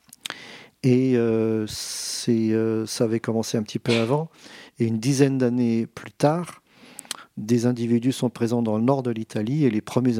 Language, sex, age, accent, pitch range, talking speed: French, male, 40-59, French, 110-130 Hz, 170 wpm